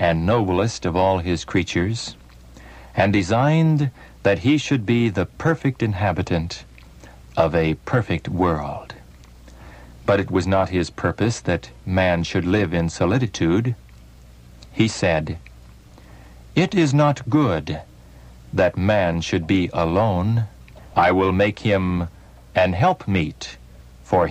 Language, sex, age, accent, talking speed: English, male, 60-79, American, 120 wpm